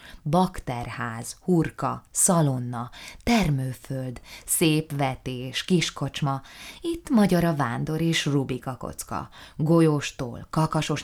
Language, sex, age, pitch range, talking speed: Hungarian, female, 20-39, 130-160 Hz, 85 wpm